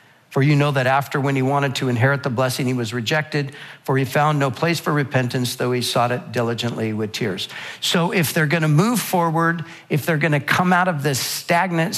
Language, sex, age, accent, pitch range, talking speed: English, male, 50-69, American, 135-165 Hz, 225 wpm